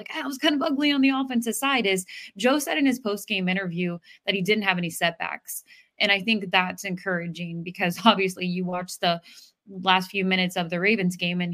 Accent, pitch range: American, 180-230 Hz